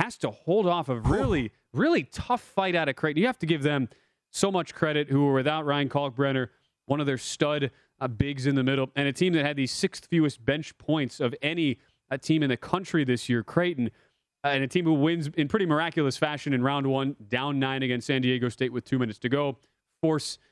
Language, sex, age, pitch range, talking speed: English, male, 30-49, 135-155 Hz, 230 wpm